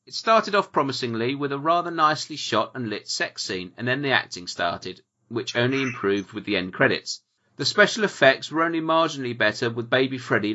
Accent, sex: British, male